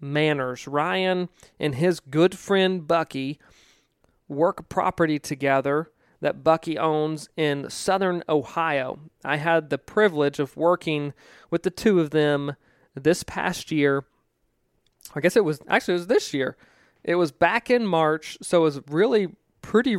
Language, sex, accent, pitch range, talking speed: English, male, American, 145-175 Hz, 145 wpm